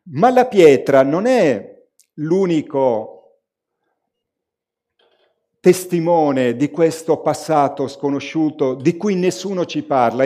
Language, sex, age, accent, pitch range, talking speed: Italian, male, 50-69, native, 135-180 Hz, 95 wpm